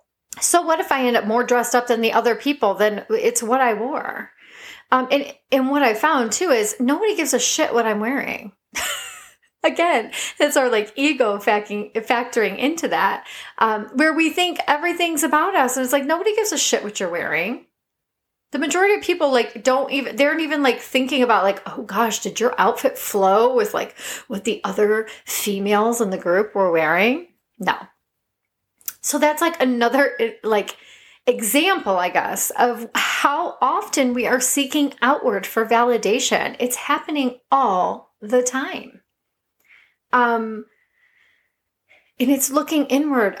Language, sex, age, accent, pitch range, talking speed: English, female, 30-49, American, 220-285 Hz, 165 wpm